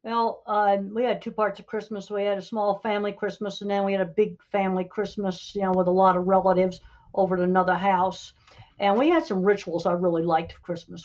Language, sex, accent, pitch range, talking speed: English, female, American, 180-205 Hz, 240 wpm